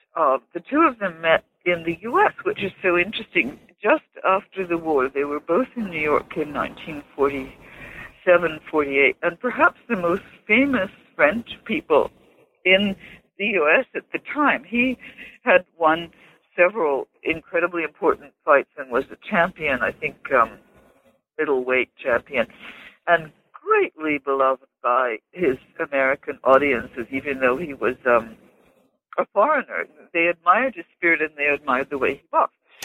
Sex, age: female, 60-79